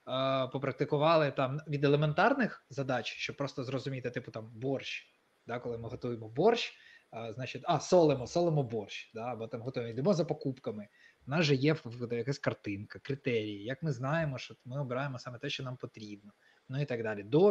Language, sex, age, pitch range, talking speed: Ukrainian, male, 20-39, 115-150 Hz, 180 wpm